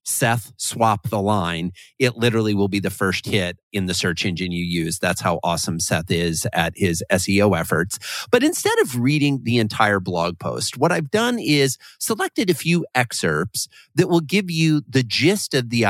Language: English